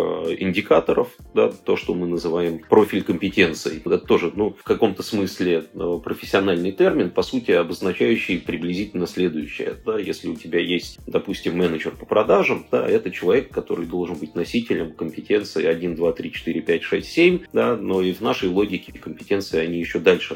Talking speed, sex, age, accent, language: 160 wpm, male, 30-49, native, Russian